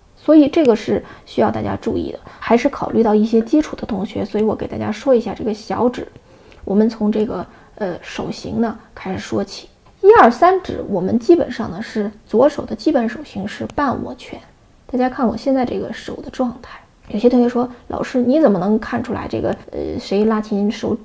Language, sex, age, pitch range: Chinese, female, 20-39, 195-255 Hz